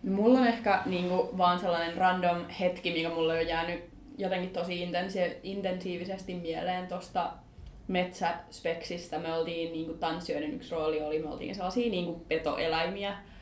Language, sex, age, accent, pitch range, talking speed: Finnish, female, 20-39, native, 165-185 Hz, 140 wpm